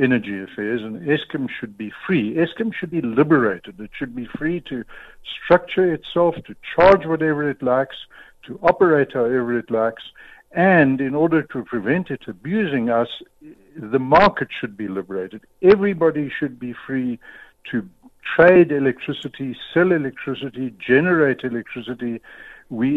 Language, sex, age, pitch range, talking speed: English, male, 60-79, 120-175 Hz, 140 wpm